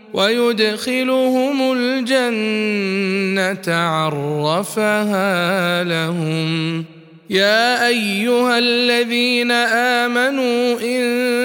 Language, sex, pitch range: Arabic, male, 195-240 Hz